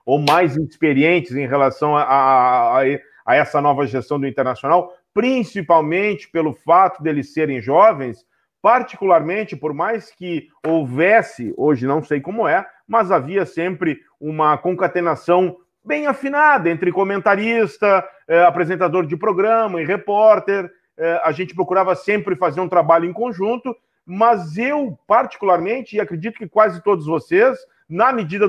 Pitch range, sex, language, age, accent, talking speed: 165-230 Hz, male, Portuguese, 40-59, Brazilian, 135 wpm